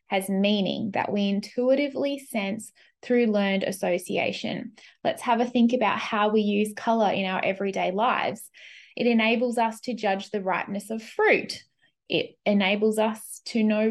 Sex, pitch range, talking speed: female, 200-245 Hz, 155 wpm